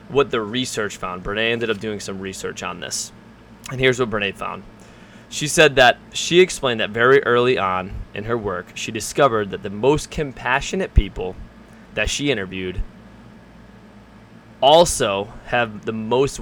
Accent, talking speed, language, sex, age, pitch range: American, 155 wpm, English, male, 20-39, 110-135 Hz